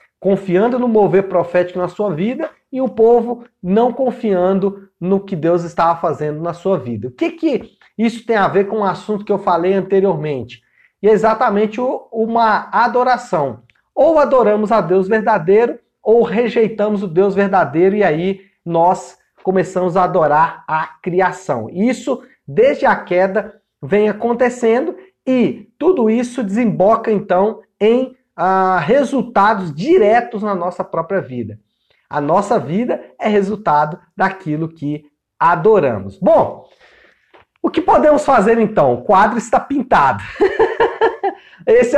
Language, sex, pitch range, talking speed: Portuguese, male, 180-235 Hz, 135 wpm